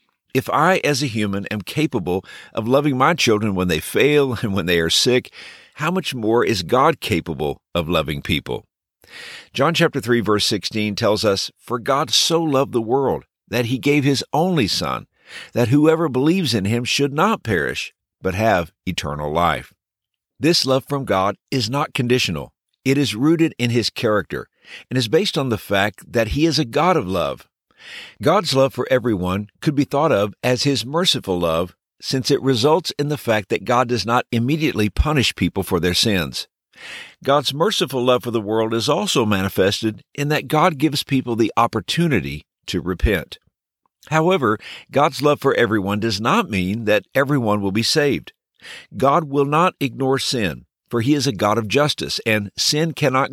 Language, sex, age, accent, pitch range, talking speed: English, male, 50-69, American, 105-145 Hz, 180 wpm